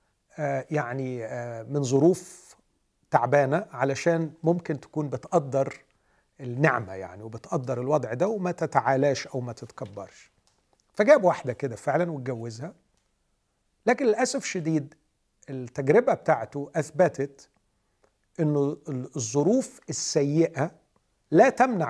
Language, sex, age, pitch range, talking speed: Arabic, male, 50-69, 135-180 Hz, 95 wpm